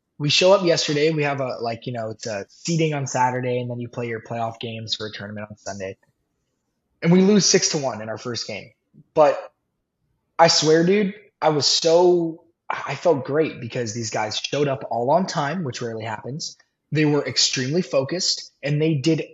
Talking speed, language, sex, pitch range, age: 205 wpm, English, male, 130-170 Hz, 20-39